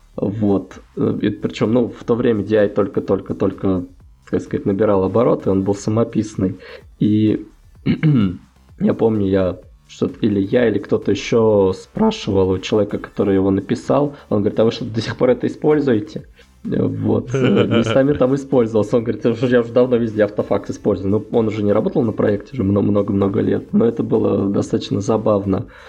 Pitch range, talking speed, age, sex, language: 100-125 Hz, 160 wpm, 20-39, male, Russian